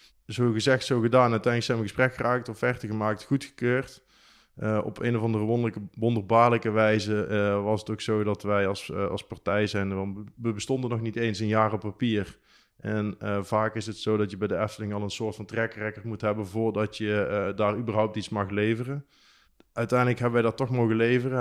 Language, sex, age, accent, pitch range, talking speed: Dutch, male, 20-39, Dutch, 105-120 Hz, 205 wpm